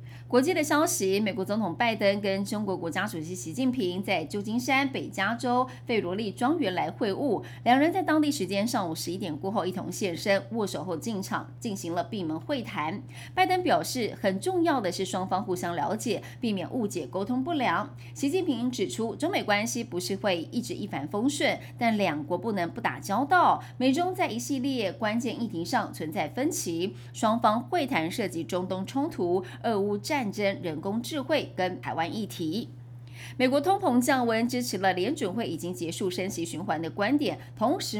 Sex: female